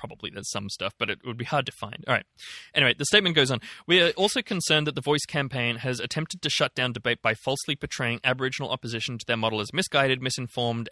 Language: English